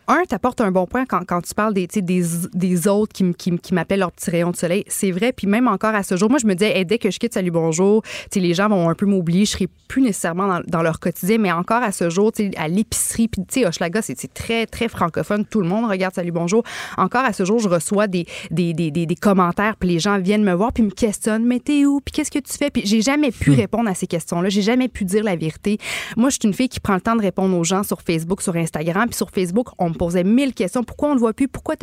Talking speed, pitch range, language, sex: 300 wpm, 185-235 Hz, French, female